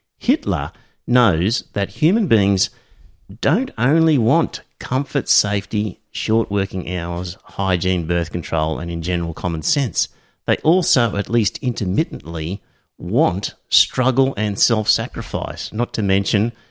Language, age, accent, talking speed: English, 50-69, Australian, 120 wpm